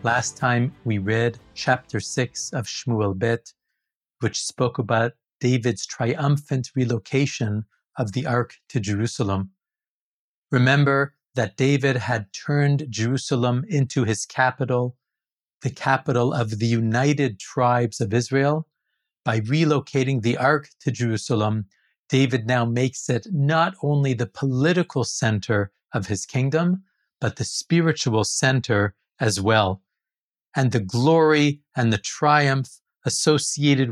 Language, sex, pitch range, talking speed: English, male, 120-145 Hz, 120 wpm